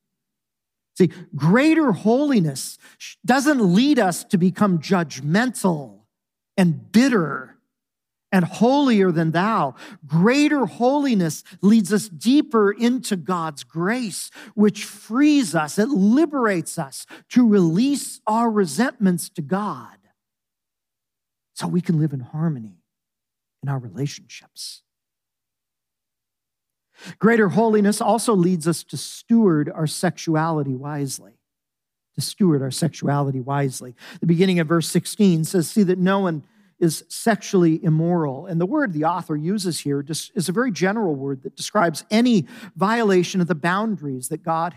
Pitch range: 155-215 Hz